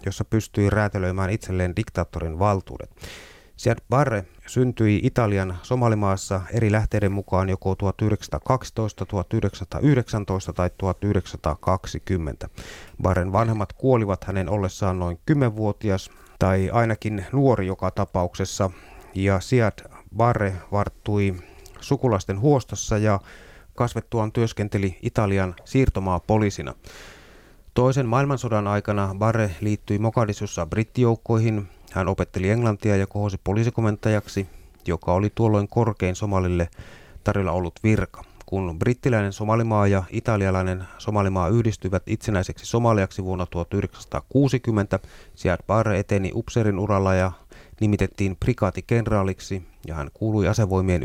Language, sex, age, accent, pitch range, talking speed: Finnish, male, 30-49, native, 95-110 Hz, 100 wpm